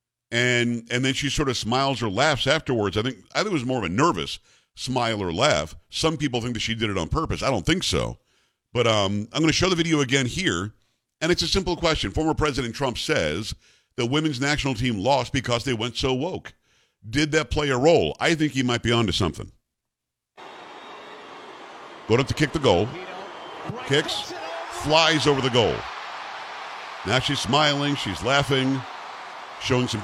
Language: English